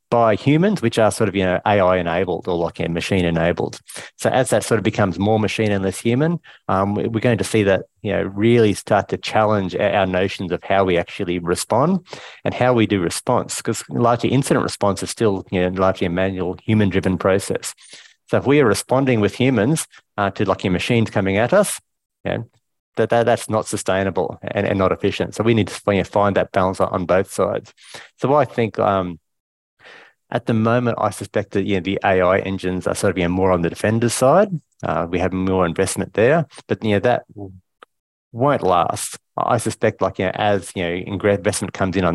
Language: English